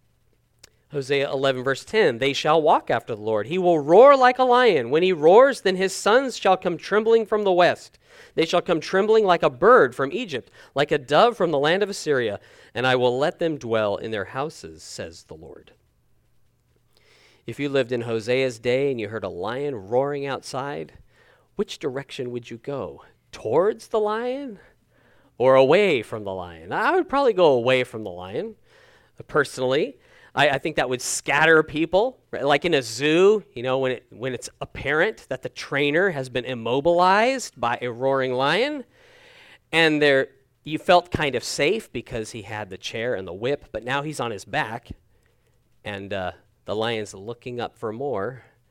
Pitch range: 125-190 Hz